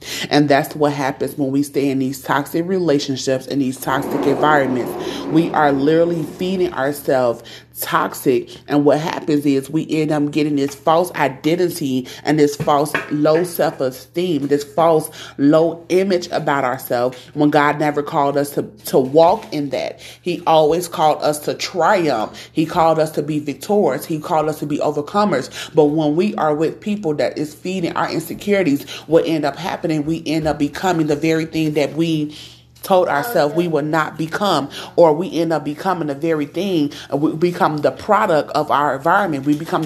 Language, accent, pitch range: English, American, 140-165 Hz